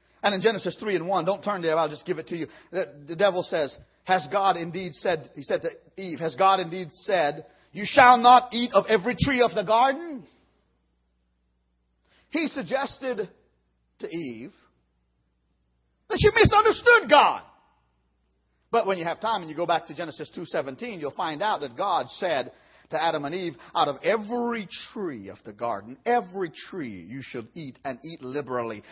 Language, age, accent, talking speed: English, 40-59, American, 180 wpm